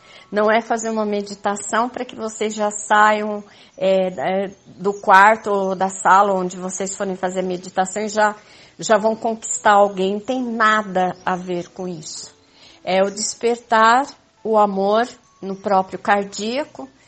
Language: Portuguese